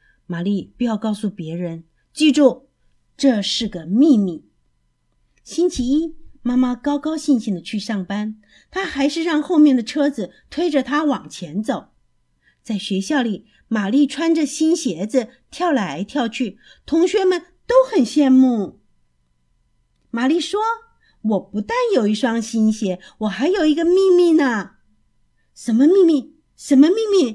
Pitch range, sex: 200-310 Hz, female